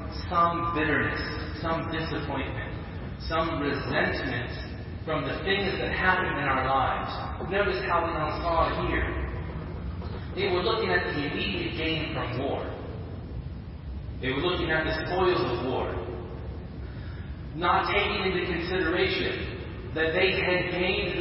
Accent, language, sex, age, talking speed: American, English, female, 30-49, 130 wpm